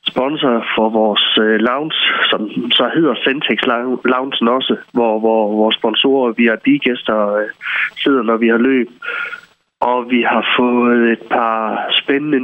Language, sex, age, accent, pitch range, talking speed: Danish, male, 30-49, native, 115-135 Hz, 145 wpm